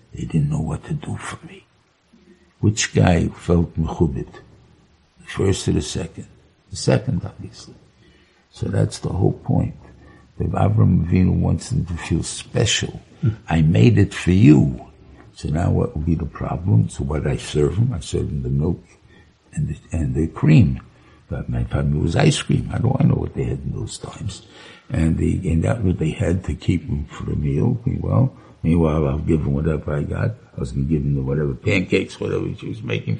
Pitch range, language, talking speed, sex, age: 75-100 Hz, English, 200 wpm, male, 60-79